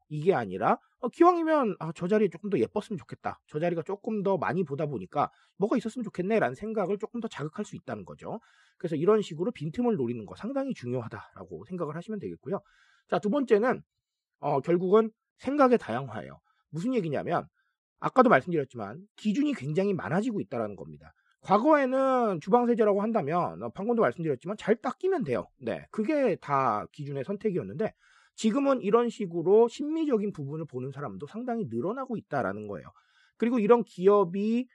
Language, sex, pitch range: Korean, male, 160-235 Hz